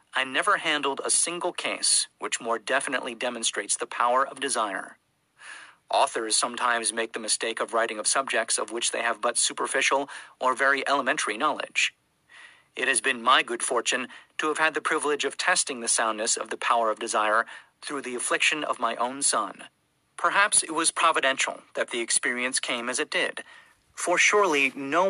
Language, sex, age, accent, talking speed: English, male, 40-59, American, 175 wpm